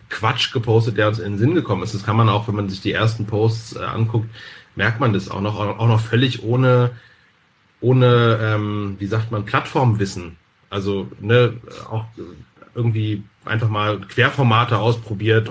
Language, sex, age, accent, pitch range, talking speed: German, male, 40-59, German, 105-120 Hz, 165 wpm